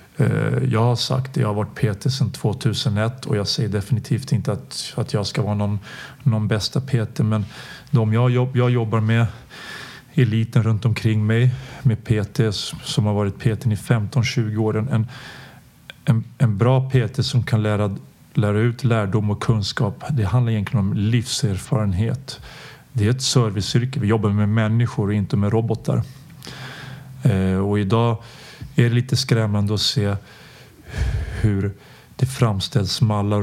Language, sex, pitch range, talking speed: English, male, 105-130 Hz, 155 wpm